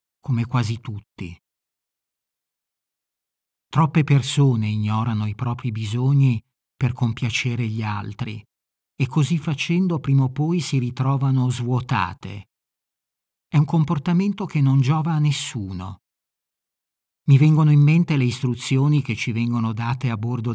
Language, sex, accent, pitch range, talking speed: Italian, male, native, 115-145 Hz, 125 wpm